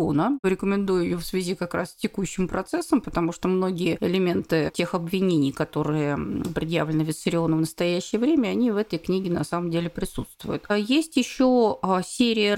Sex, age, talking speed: female, 30-49, 155 wpm